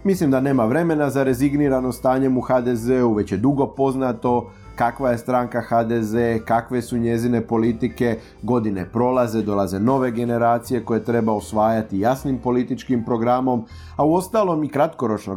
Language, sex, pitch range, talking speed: Croatian, male, 110-135 Hz, 140 wpm